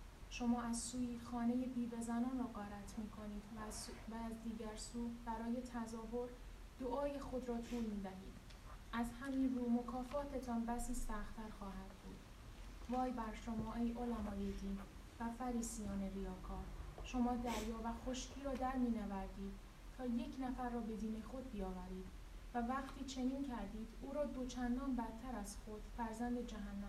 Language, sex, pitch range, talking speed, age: Persian, female, 215-250 Hz, 145 wpm, 10-29